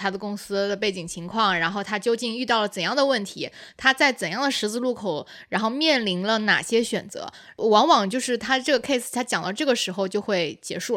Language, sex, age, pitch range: Chinese, female, 20-39, 195-255 Hz